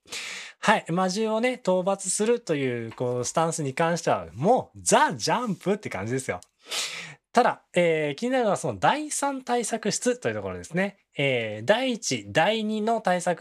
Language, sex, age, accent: Japanese, male, 20-39, native